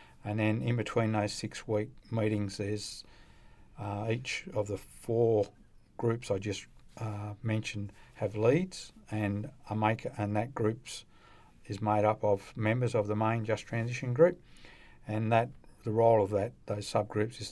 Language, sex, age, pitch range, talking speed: English, male, 50-69, 105-115 Hz, 160 wpm